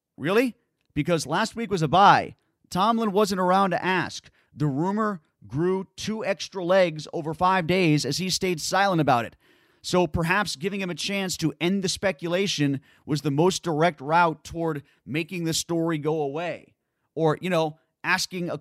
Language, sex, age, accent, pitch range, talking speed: English, male, 30-49, American, 150-180 Hz, 170 wpm